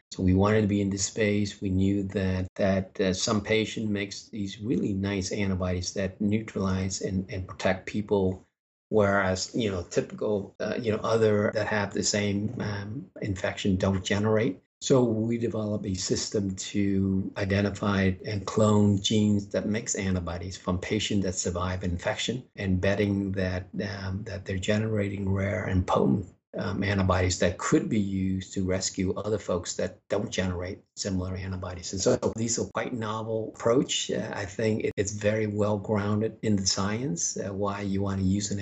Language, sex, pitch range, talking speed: English, male, 95-105 Hz, 170 wpm